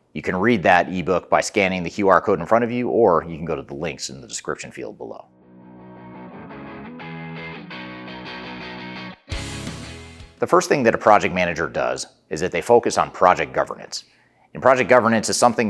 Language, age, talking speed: English, 30-49, 175 wpm